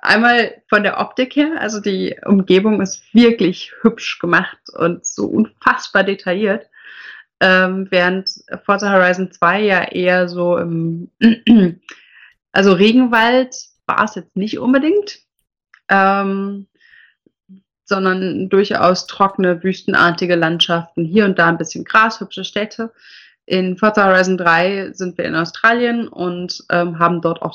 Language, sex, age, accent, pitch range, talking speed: German, female, 30-49, German, 175-225 Hz, 130 wpm